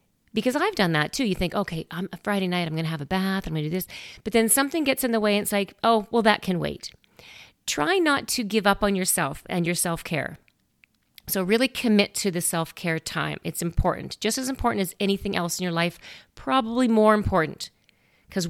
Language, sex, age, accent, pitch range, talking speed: English, female, 40-59, American, 165-205 Hz, 225 wpm